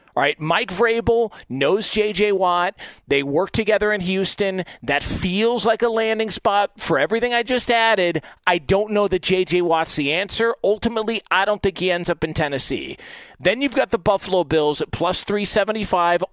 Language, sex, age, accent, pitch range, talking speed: English, male, 40-59, American, 165-210 Hz, 180 wpm